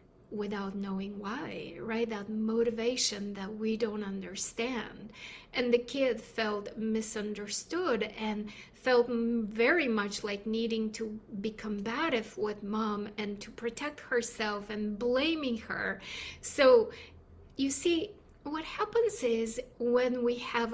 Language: English